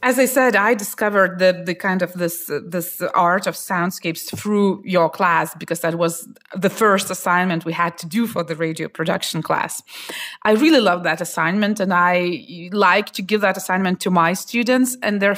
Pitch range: 175-245 Hz